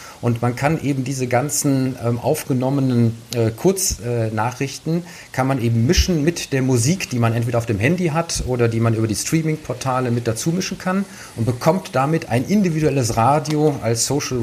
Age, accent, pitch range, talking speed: 40-59, German, 115-135 Hz, 180 wpm